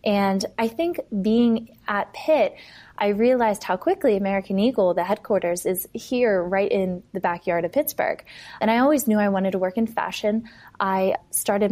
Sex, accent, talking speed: female, American, 175 wpm